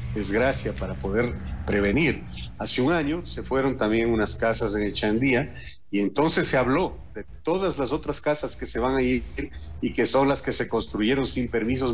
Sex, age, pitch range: male, 40-59, 110-140 Hz